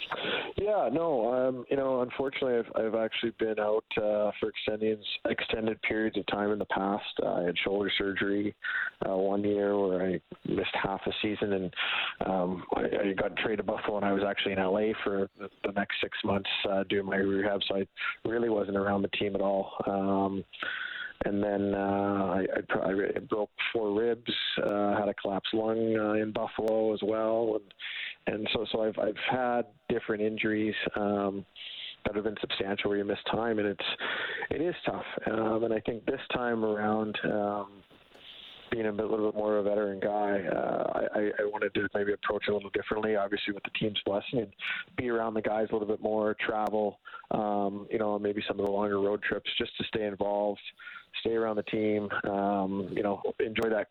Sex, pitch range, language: male, 100-110 Hz, English